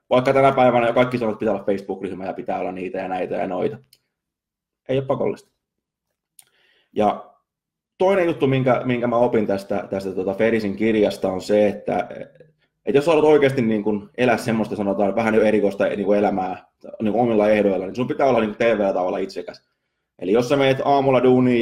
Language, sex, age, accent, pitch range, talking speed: Finnish, male, 20-39, native, 100-125 Hz, 180 wpm